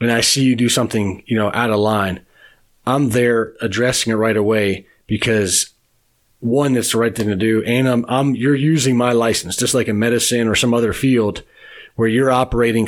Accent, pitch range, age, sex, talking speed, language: American, 110-130 Hz, 30-49, male, 200 wpm, English